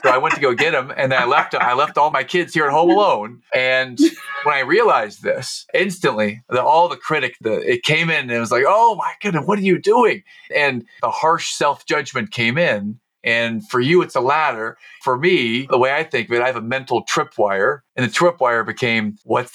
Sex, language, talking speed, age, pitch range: male, English, 235 wpm, 40-59, 115-150 Hz